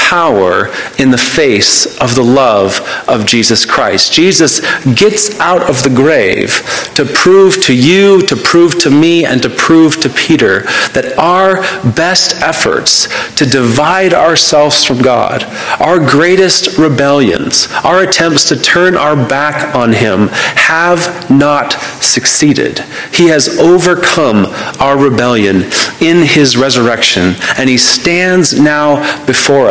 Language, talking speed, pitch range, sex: English, 130 wpm, 125-165 Hz, male